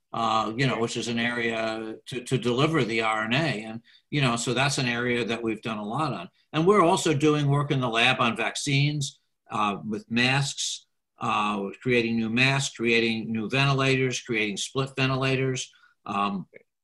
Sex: male